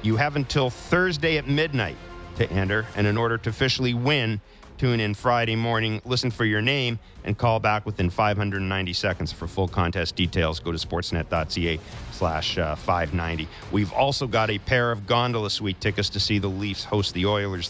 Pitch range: 85-105 Hz